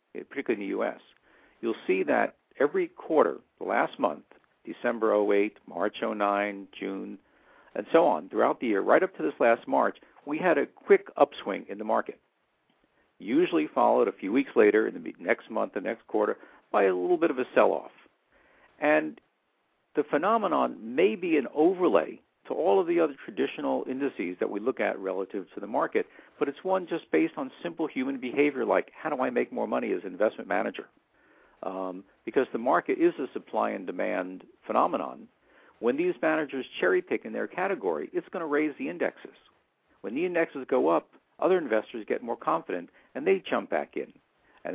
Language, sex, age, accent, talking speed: English, male, 50-69, American, 185 wpm